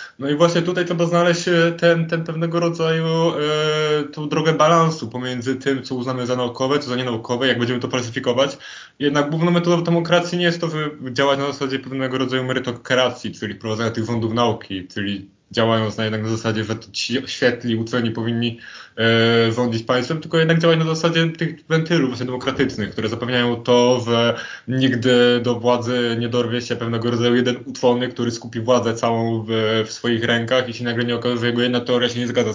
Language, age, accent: Polish, 20-39, native